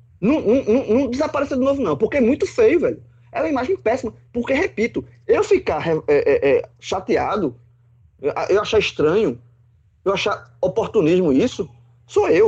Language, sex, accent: Portuguese, male, Brazilian